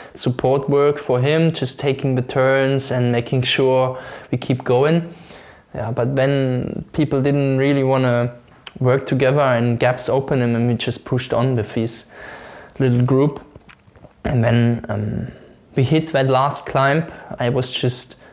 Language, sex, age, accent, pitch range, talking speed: English, male, 20-39, German, 120-140 Hz, 155 wpm